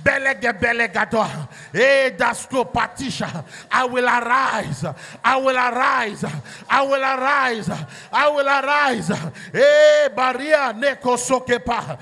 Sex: male